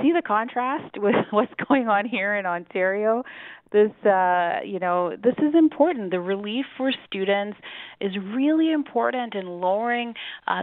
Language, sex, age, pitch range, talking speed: English, female, 30-49, 155-200 Hz, 150 wpm